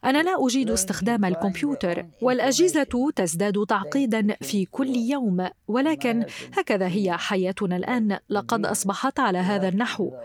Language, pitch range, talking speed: Arabic, 195-250 Hz, 125 wpm